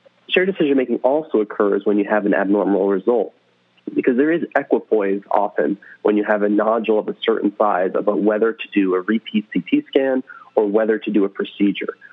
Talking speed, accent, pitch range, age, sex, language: 190 wpm, American, 100-115 Hz, 30-49, male, English